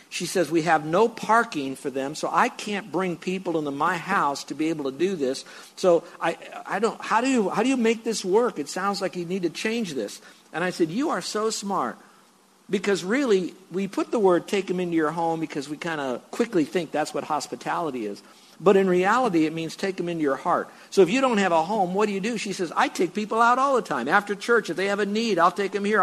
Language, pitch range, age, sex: English, 165-220 Hz, 60-79, male